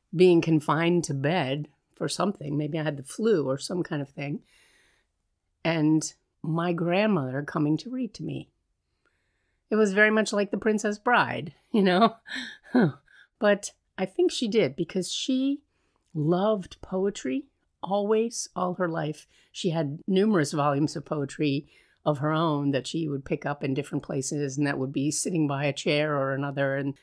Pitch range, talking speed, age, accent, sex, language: 145-185 Hz, 165 wpm, 40-59, American, female, English